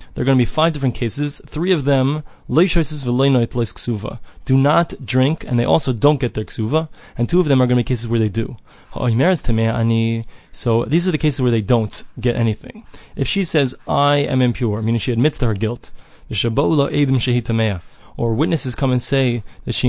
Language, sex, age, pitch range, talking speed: English, male, 20-39, 115-140 Hz, 185 wpm